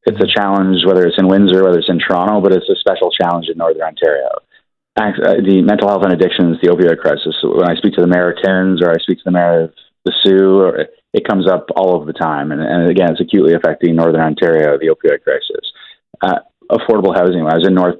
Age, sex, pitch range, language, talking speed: 30-49, male, 90-125 Hz, English, 230 wpm